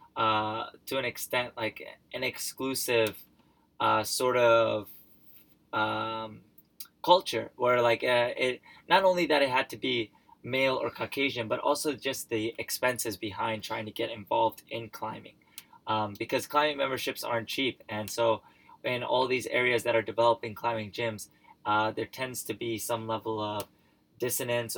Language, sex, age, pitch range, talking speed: English, male, 20-39, 110-125 Hz, 155 wpm